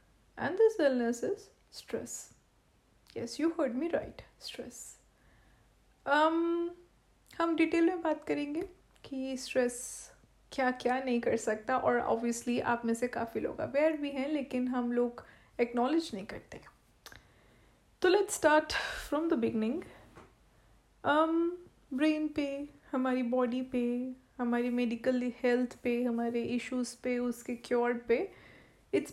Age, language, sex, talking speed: 30-49, Hindi, female, 125 wpm